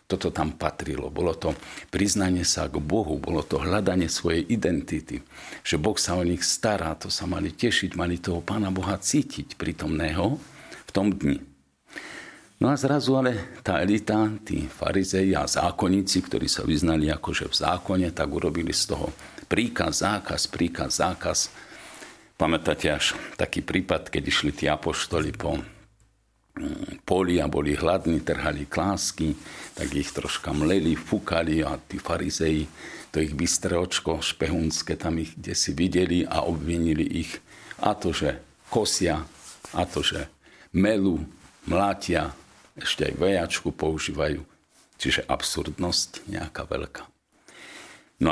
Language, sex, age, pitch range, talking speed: Slovak, male, 50-69, 80-100 Hz, 140 wpm